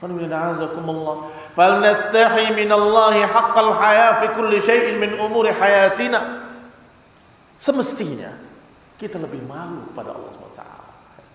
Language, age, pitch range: Indonesian, 40-59, 185-250 Hz